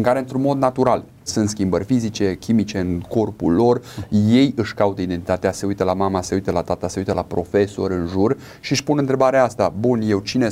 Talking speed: 215 wpm